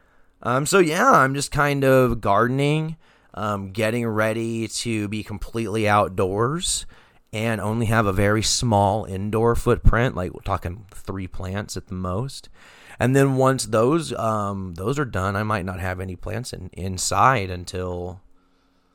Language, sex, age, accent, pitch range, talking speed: English, male, 30-49, American, 95-115 Hz, 150 wpm